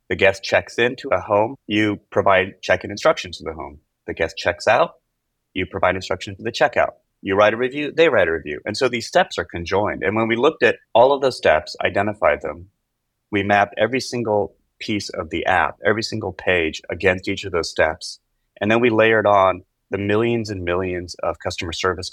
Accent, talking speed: American, 205 wpm